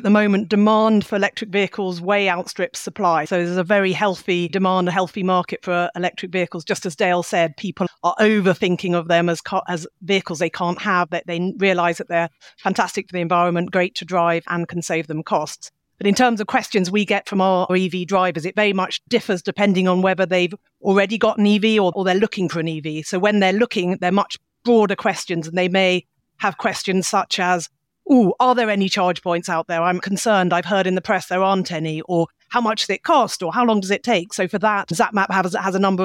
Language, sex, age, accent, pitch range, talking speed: English, female, 40-59, British, 180-210 Hz, 230 wpm